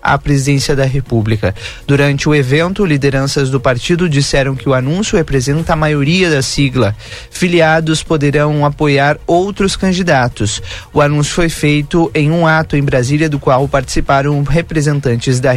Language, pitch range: Portuguese, 135-165 Hz